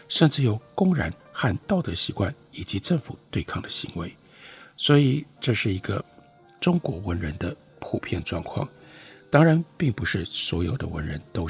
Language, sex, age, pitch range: Chinese, male, 60-79, 95-155 Hz